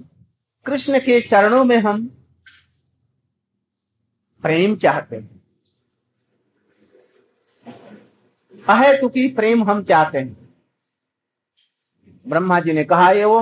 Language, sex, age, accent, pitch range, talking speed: Hindi, male, 50-69, native, 160-245 Hz, 90 wpm